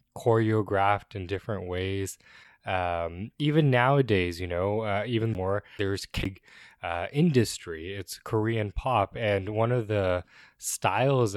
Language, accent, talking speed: English, American, 125 wpm